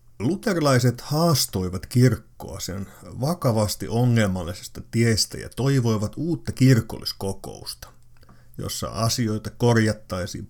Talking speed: 80 wpm